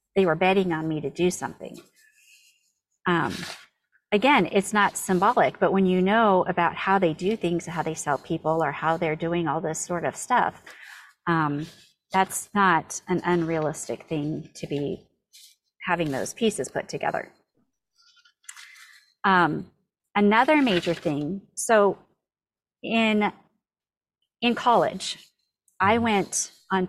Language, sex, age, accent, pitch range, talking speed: English, female, 30-49, American, 165-205 Hz, 130 wpm